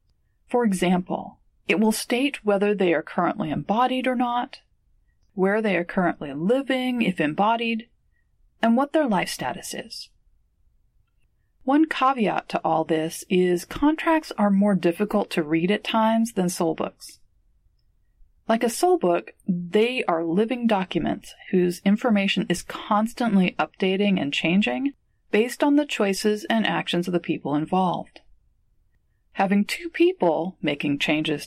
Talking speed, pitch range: 135 wpm, 170-240 Hz